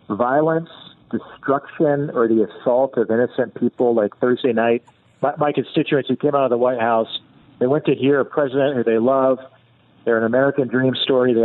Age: 40-59